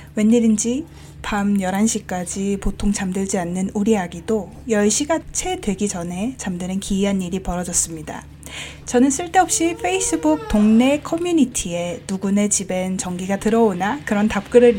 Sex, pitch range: female, 185-255 Hz